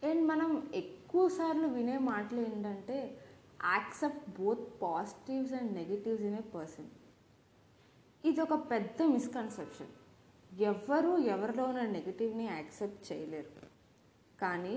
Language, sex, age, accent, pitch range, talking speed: Telugu, female, 20-39, native, 190-275 Hz, 60 wpm